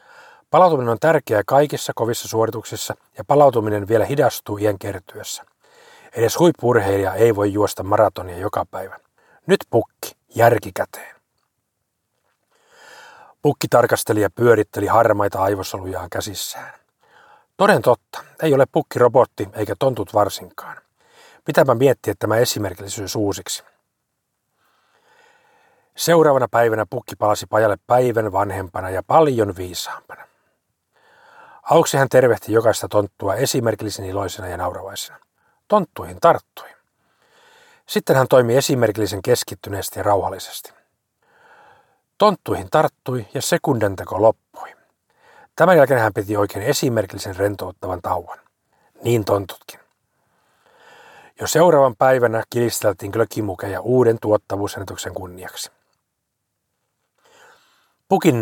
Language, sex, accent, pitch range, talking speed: Finnish, male, native, 100-135 Hz, 100 wpm